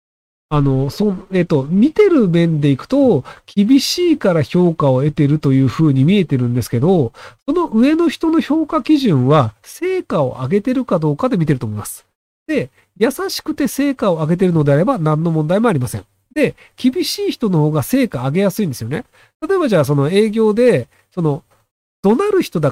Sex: male